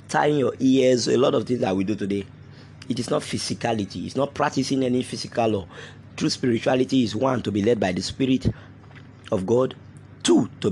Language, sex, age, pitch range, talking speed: English, male, 30-49, 100-130 Hz, 195 wpm